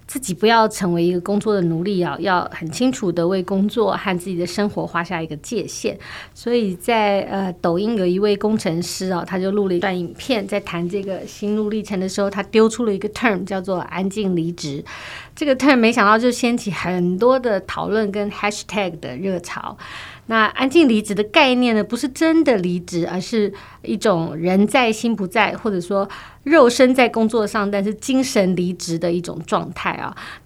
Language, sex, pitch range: Chinese, female, 180-225 Hz